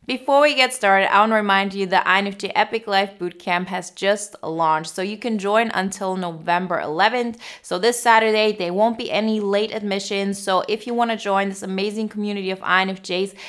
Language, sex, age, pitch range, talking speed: English, female, 20-39, 180-225 Hz, 195 wpm